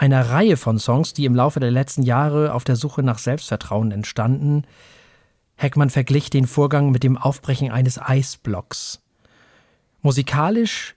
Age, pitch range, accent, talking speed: 40-59, 125-155 Hz, German, 140 wpm